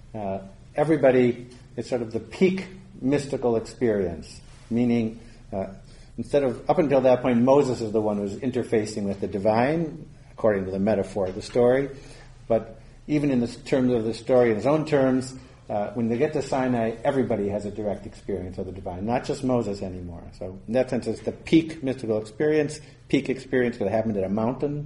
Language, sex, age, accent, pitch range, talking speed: English, male, 50-69, American, 110-135 Hz, 190 wpm